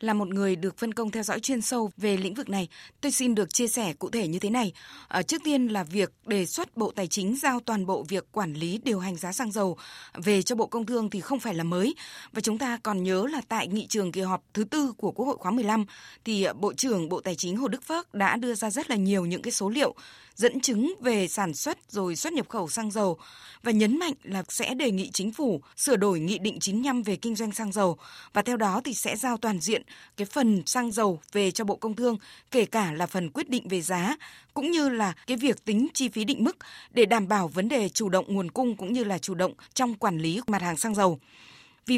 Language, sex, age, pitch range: Vietnamese, female, 20-39, 190-245 Hz